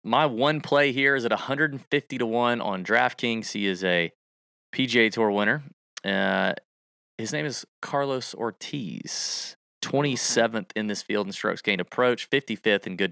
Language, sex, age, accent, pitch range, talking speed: English, male, 30-49, American, 100-130 Hz, 155 wpm